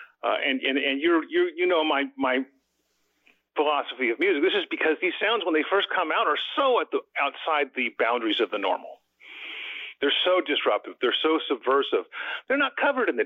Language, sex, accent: English, male, American